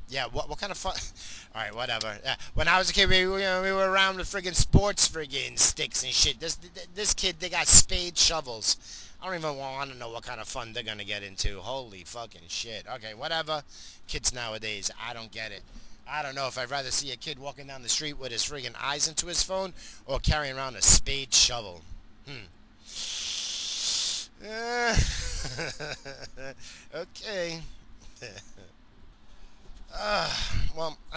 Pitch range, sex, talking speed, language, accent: 105-150 Hz, male, 175 wpm, English, American